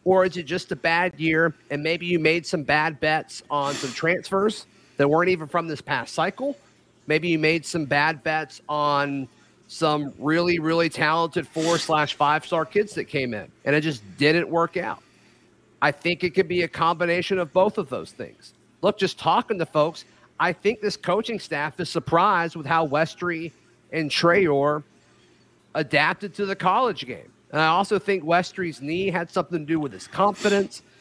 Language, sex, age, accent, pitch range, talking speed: English, male, 40-59, American, 150-185 Hz, 180 wpm